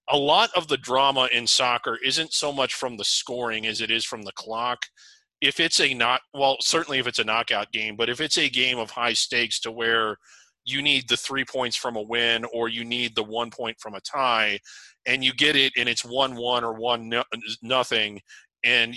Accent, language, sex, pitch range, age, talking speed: American, English, male, 115-135 Hz, 30-49, 220 wpm